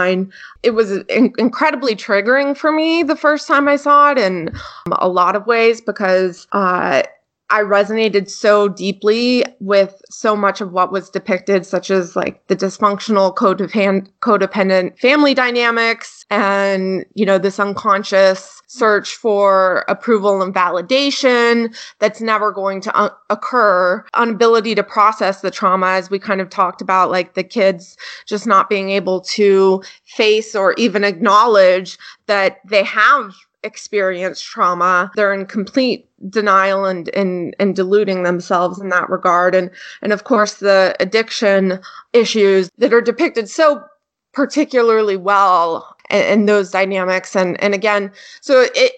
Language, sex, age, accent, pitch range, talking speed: English, female, 20-39, American, 195-230 Hz, 145 wpm